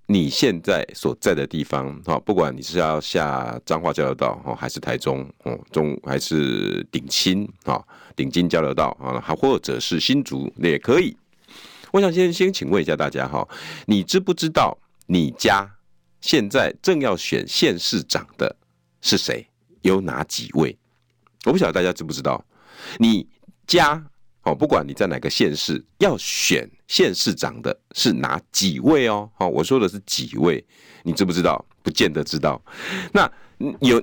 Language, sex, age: Chinese, male, 50-69